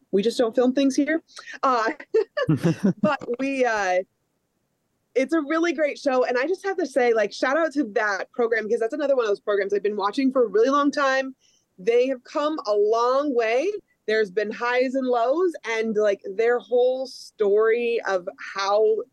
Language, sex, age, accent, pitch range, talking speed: English, female, 20-39, American, 205-285 Hz, 190 wpm